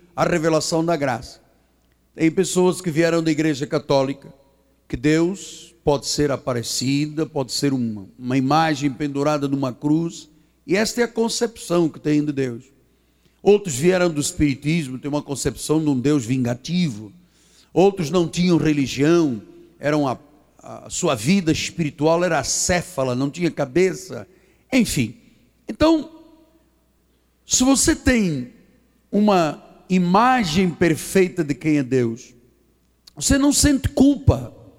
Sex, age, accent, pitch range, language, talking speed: male, 60-79, Brazilian, 145-240 Hz, Portuguese, 130 wpm